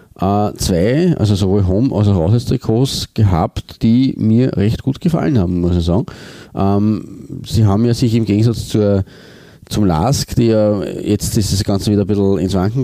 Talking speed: 180 wpm